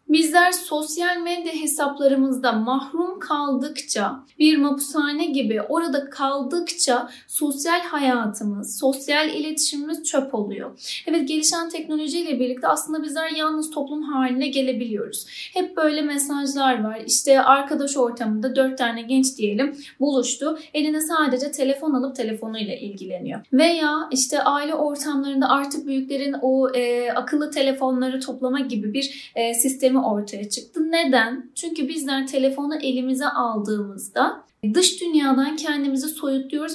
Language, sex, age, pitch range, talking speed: Turkish, female, 10-29, 255-310 Hz, 120 wpm